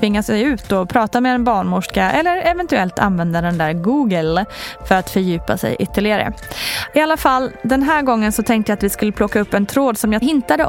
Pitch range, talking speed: 185-255 Hz, 215 wpm